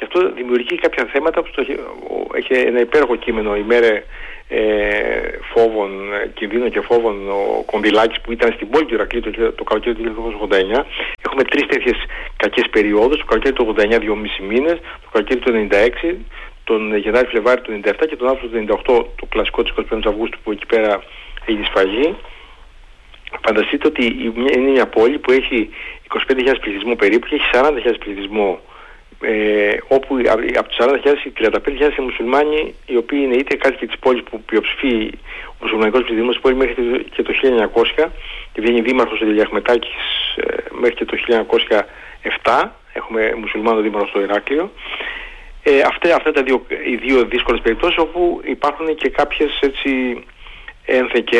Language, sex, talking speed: Greek, male, 160 wpm